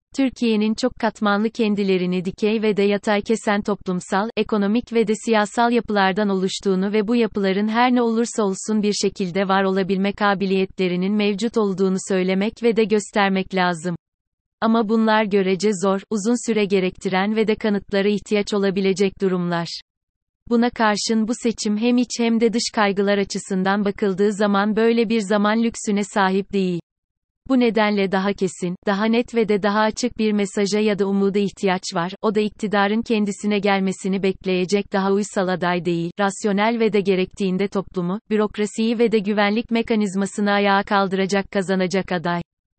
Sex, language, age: female, Turkish, 30-49